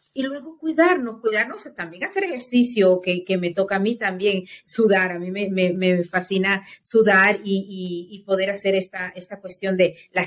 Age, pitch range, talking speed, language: 40-59, 185-235 Hz, 185 wpm, Spanish